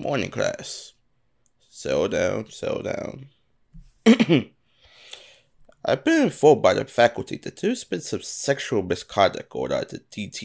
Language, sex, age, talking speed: English, male, 20-39, 125 wpm